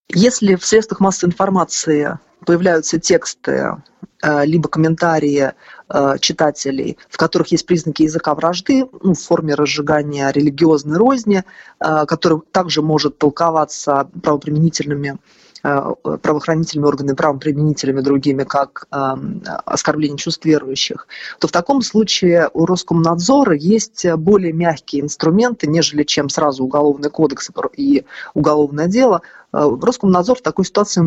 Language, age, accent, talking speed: Russian, 20-39, native, 110 wpm